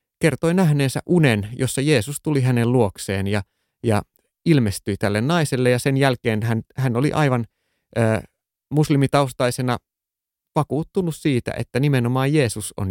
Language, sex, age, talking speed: Finnish, male, 30-49, 130 wpm